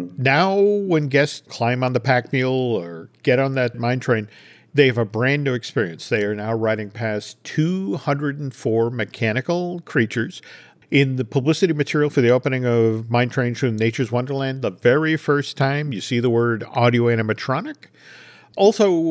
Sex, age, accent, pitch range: male, 50-69, American, 120-155 Hz